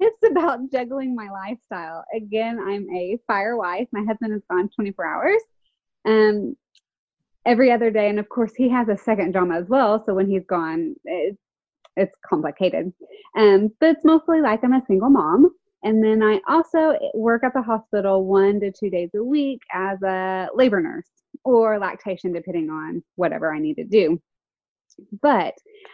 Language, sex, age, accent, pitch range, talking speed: English, female, 20-39, American, 185-250 Hz, 170 wpm